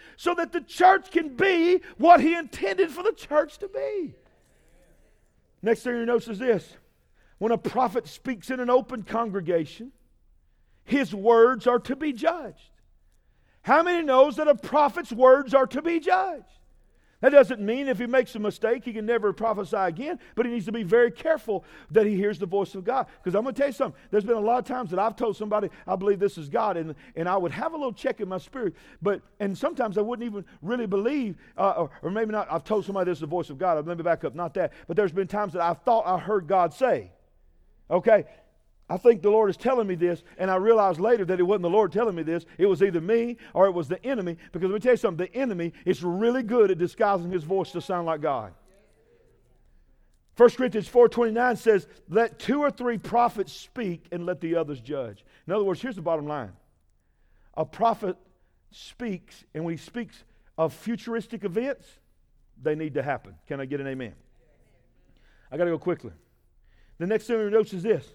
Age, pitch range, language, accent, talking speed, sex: 50-69, 180-250 Hz, English, American, 220 wpm, male